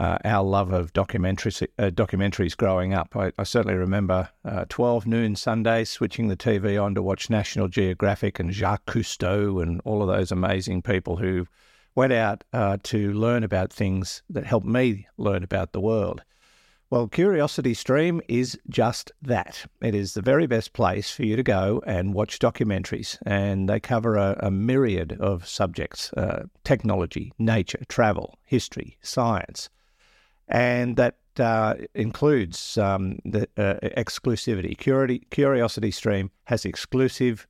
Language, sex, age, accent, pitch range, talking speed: English, male, 50-69, Australian, 95-120 Hz, 150 wpm